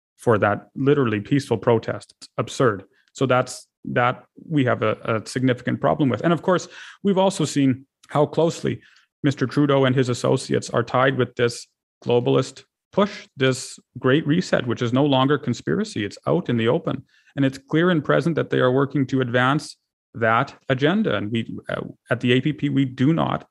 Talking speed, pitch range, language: 180 wpm, 125-150 Hz, English